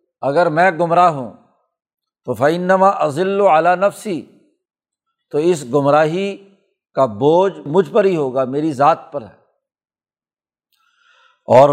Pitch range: 150-185 Hz